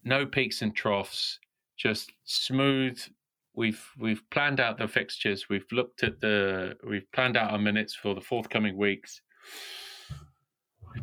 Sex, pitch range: male, 105-125 Hz